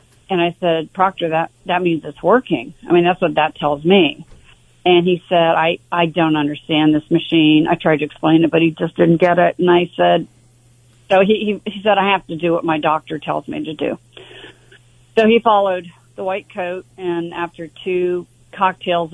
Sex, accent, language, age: female, American, English, 40-59